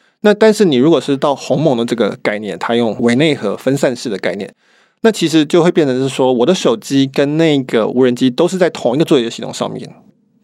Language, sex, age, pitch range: Chinese, male, 20-39, 130-175 Hz